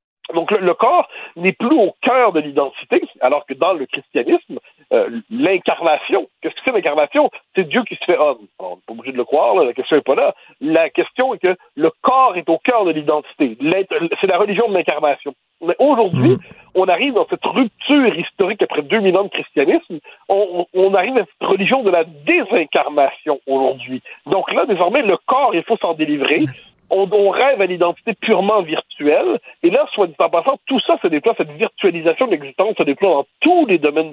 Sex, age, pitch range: male, 60-79, 165-245 Hz